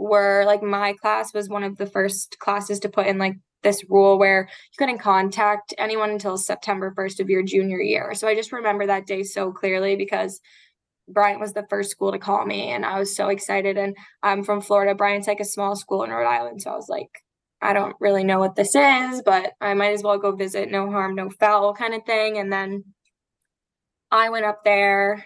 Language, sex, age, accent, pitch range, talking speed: English, female, 10-29, American, 200-210 Hz, 220 wpm